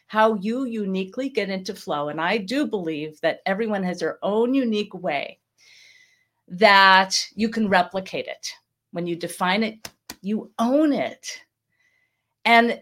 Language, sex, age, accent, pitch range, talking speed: English, female, 50-69, American, 175-235 Hz, 140 wpm